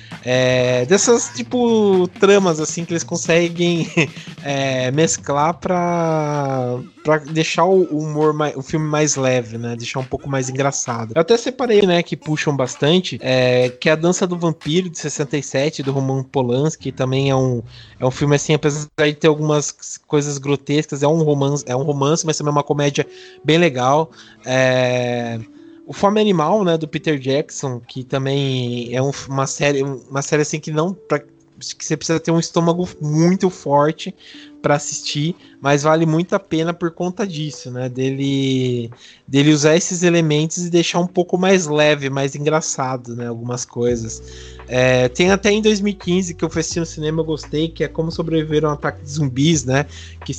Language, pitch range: Portuguese, 130-165 Hz